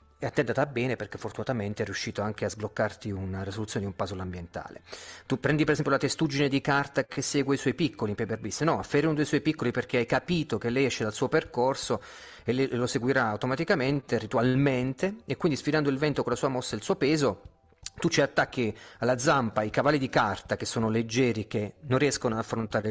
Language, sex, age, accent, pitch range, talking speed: Italian, male, 30-49, native, 110-145 Hz, 215 wpm